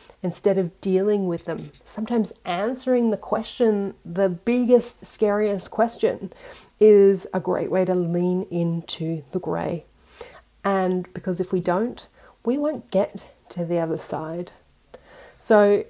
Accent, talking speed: Australian, 130 wpm